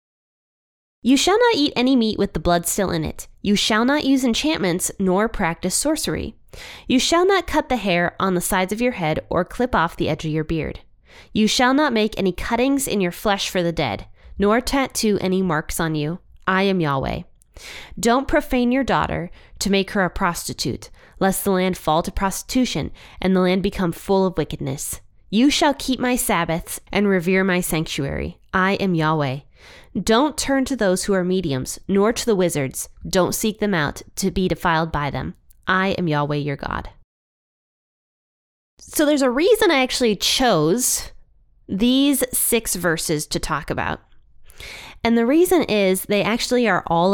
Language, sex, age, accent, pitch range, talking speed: English, female, 20-39, American, 170-235 Hz, 180 wpm